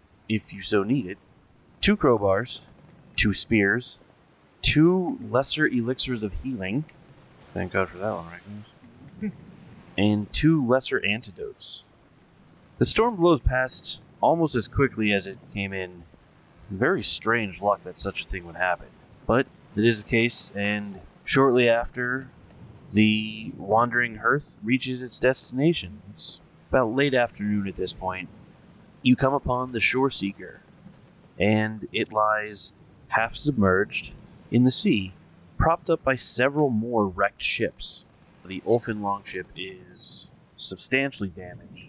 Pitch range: 95-130 Hz